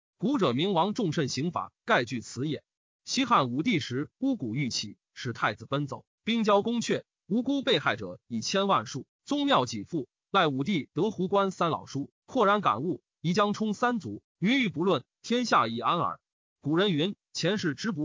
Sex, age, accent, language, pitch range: male, 30-49, native, Chinese, 150-215 Hz